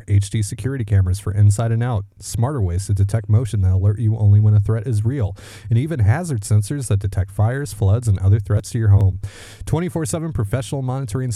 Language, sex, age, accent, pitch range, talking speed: English, male, 30-49, American, 100-130 Hz, 200 wpm